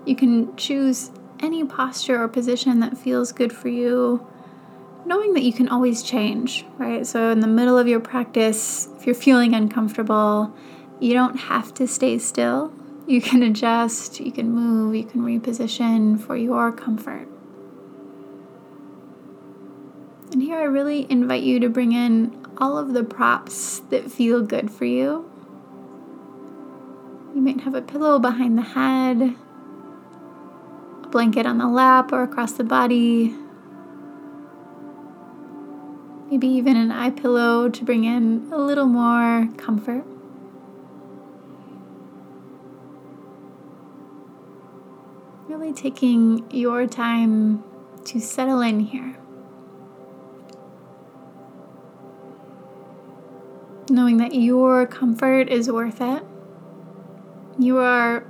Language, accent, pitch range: English, American, 215-260 Hz